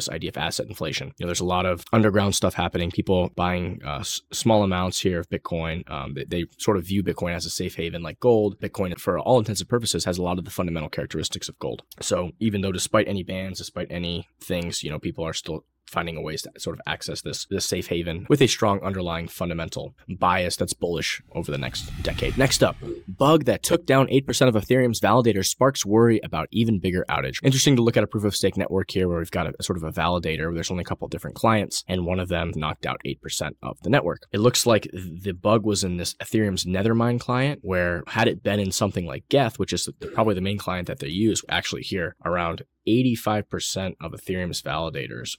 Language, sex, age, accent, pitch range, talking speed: English, male, 20-39, American, 85-110 Hz, 230 wpm